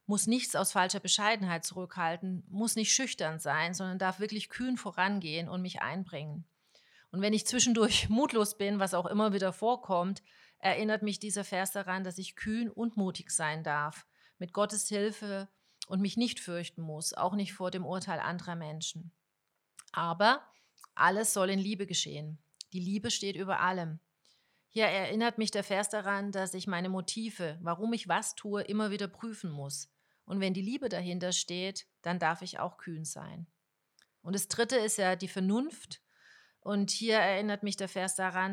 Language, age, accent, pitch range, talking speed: German, 40-59, German, 170-205 Hz, 175 wpm